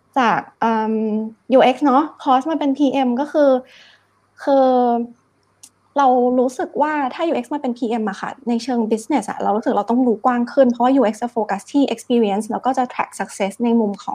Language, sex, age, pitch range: Thai, female, 20-39, 230-280 Hz